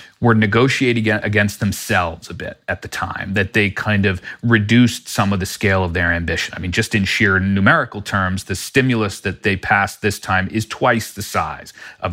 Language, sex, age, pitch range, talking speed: English, male, 40-59, 95-115 Hz, 200 wpm